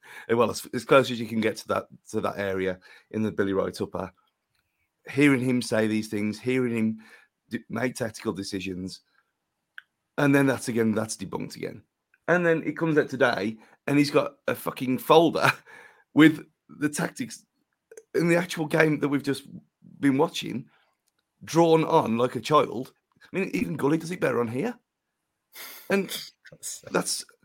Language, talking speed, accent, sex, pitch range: English, 165 wpm, British, male, 125-165 Hz